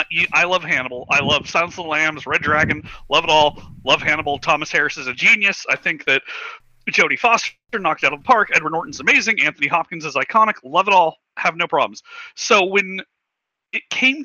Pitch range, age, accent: 155-225 Hz, 40-59, American